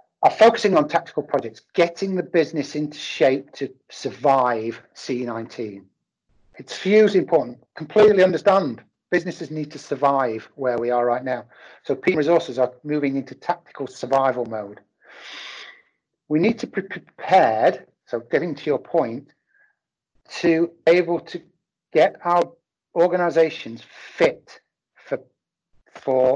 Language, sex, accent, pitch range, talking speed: English, male, British, 130-175 Hz, 125 wpm